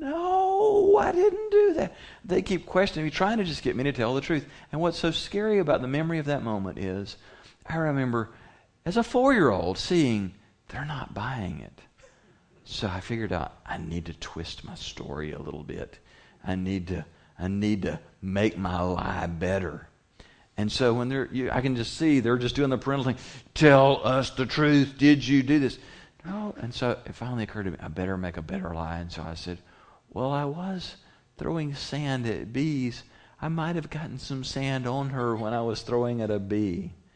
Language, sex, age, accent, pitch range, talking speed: English, male, 40-59, American, 85-135 Hz, 200 wpm